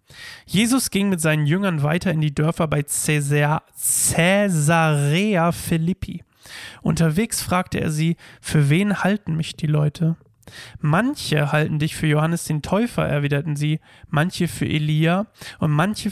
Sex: male